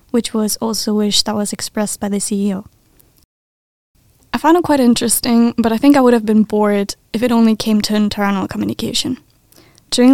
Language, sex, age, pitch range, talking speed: English, female, 10-29, 205-235 Hz, 190 wpm